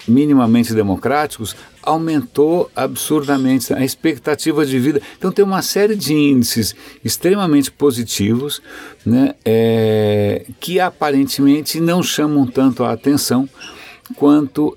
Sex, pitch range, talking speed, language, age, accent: male, 100-145 Hz, 100 wpm, Portuguese, 60-79, Brazilian